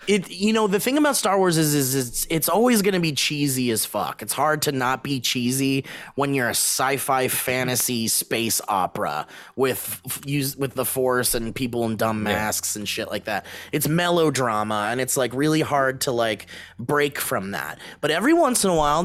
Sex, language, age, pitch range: male, English, 30-49, 125-170 Hz